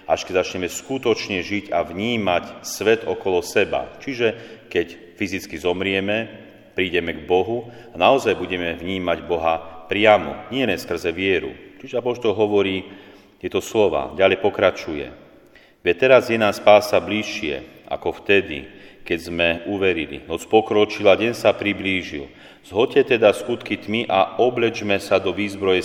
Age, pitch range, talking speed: 40-59, 90-105 Hz, 135 wpm